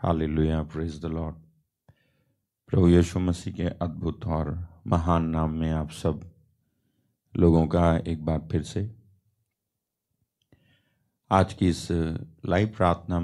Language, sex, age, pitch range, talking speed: Hindi, male, 50-69, 85-115 Hz, 115 wpm